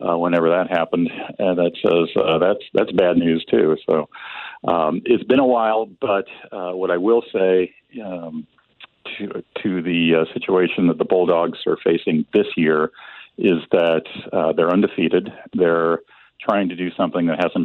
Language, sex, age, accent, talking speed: English, male, 50-69, American, 175 wpm